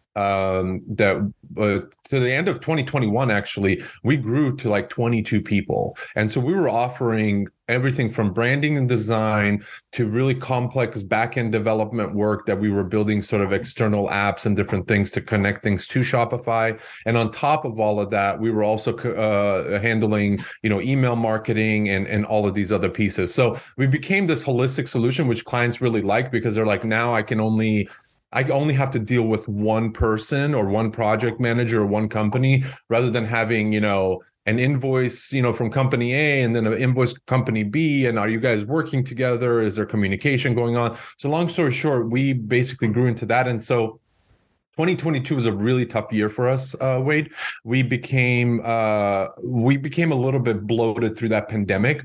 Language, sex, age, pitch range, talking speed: English, male, 30-49, 105-130 Hz, 190 wpm